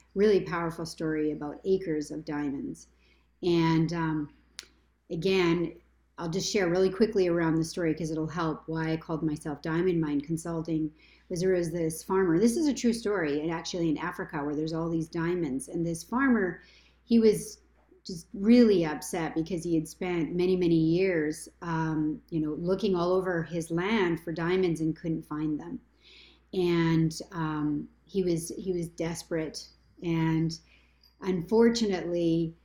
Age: 40-59